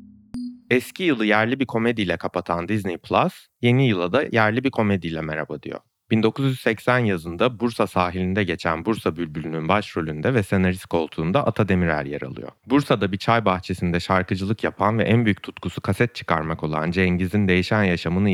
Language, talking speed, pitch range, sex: Turkish, 155 wpm, 90-120 Hz, male